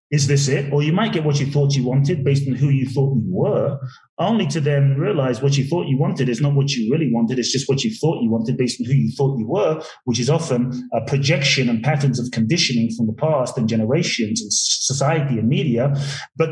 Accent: British